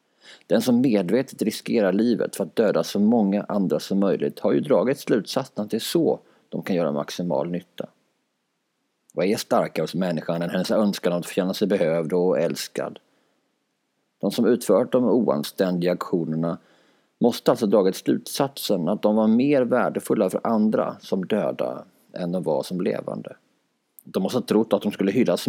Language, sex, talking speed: Swedish, male, 170 wpm